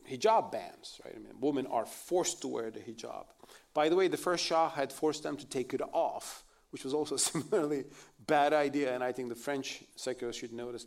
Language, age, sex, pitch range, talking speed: English, 40-59, male, 135-180 Hz, 215 wpm